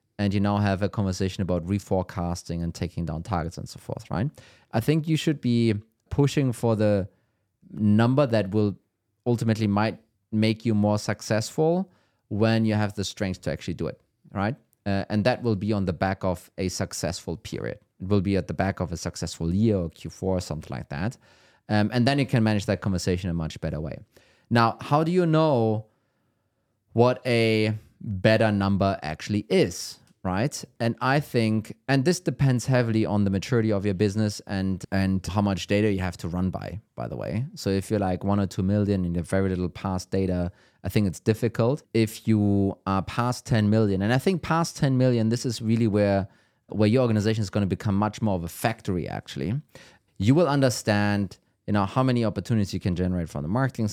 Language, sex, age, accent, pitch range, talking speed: English, male, 30-49, German, 95-115 Hz, 205 wpm